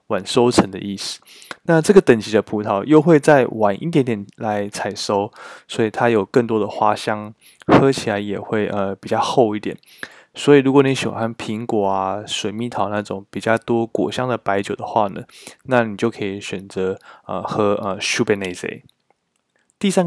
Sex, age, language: male, 20-39, Chinese